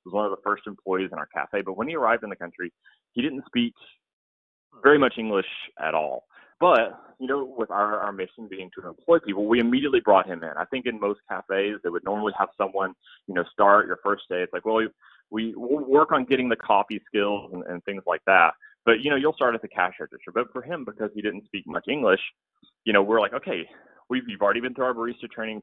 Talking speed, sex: 240 wpm, male